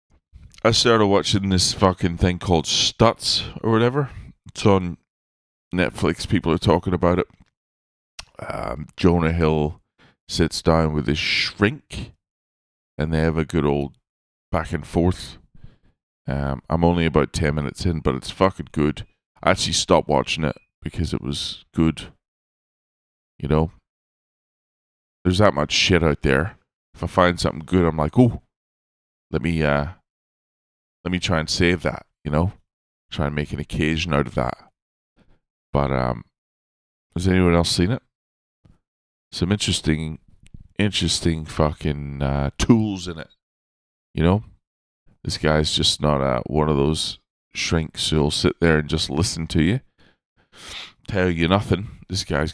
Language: English